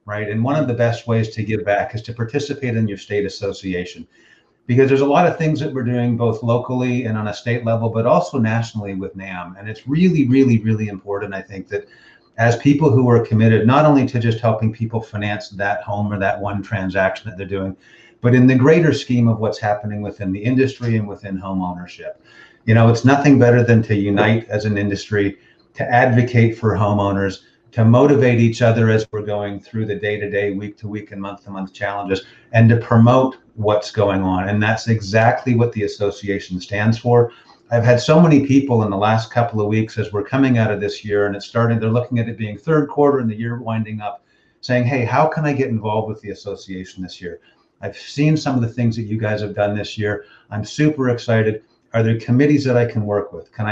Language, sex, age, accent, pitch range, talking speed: English, male, 40-59, American, 105-120 Hz, 225 wpm